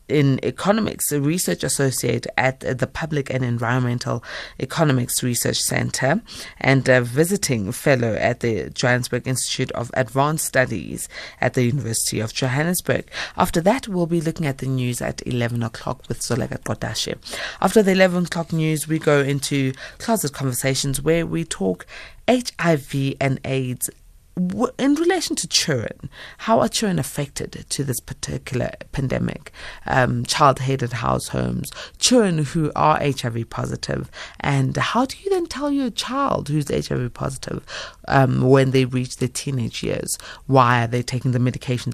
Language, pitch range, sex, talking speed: English, 125-170 Hz, female, 150 wpm